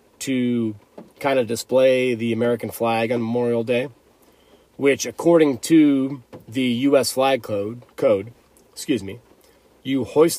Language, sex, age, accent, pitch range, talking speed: English, male, 30-49, American, 115-135 Hz, 125 wpm